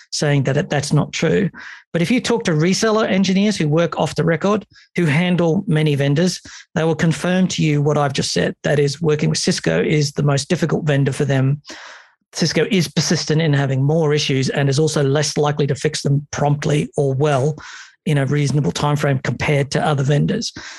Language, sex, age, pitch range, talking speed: English, male, 40-59, 145-180 Hz, 200 wpm